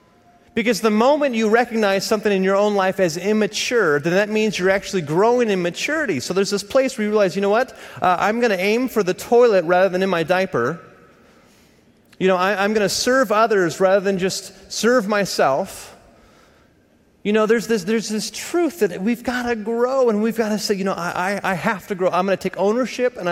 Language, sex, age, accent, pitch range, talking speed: English, male, 30-49, American, 175-220 Hz, 225 wpm